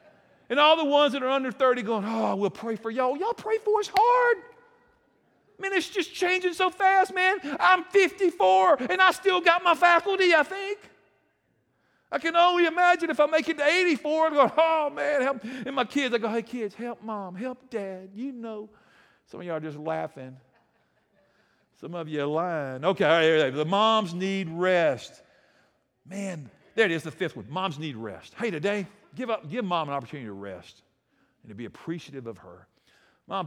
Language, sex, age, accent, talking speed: English, male, 50-69, American, 195 wpm